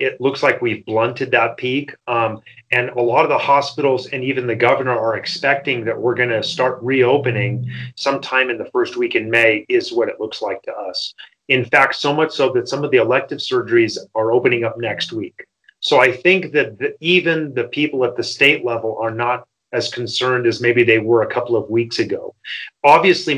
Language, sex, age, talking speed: English, male, 30-49, 210 wpm